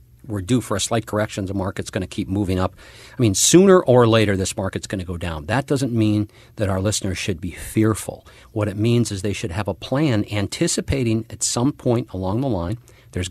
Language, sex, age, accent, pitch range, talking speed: English, male, 50-69, American, 95-115 Hz, 215 wpm